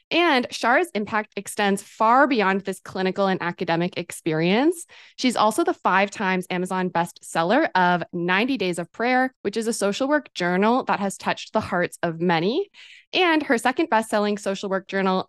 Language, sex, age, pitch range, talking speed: English, female, 20-39, 185-235 Hz, 175 wpm